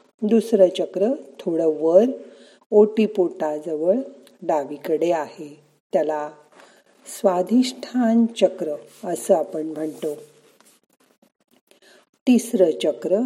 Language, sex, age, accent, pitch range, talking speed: Marathi, female, 50-69, native, 160-210 Hz, 70 wpm